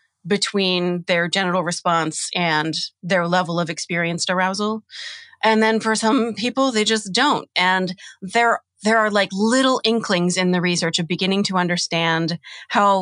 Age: 30-49